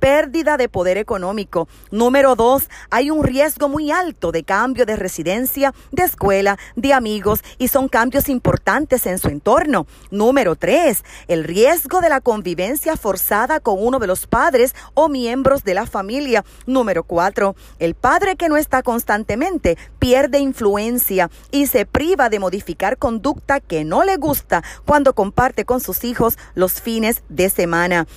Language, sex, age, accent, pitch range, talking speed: Spanish, female, 40-59, American, 200-280 Hz, 155 wpm